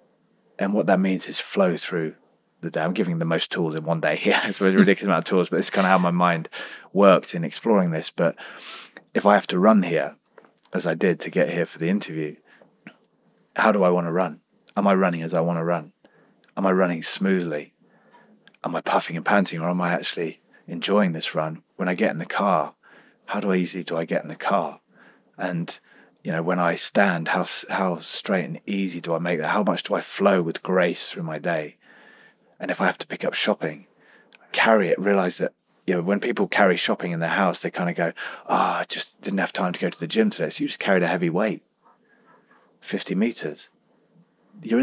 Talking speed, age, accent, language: 230 wpm, 30-49, British, English